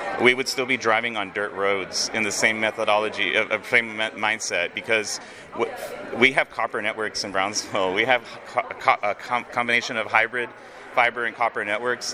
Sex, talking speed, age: male, 175 wpm, 30-49